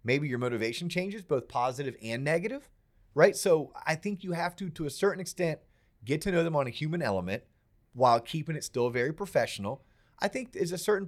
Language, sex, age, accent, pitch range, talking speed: English, male, 30-49, American, 115-160 Hz, 205 wpm